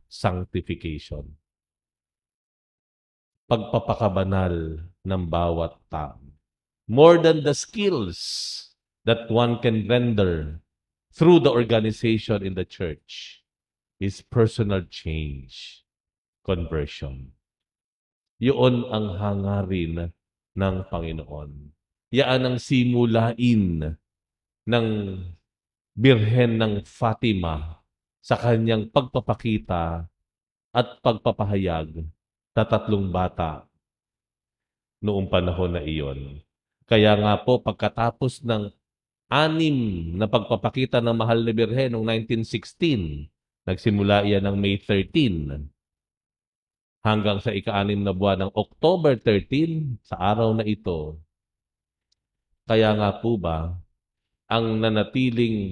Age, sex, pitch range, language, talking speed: 50-69, male, 85-115 Hz, English, 90 wpm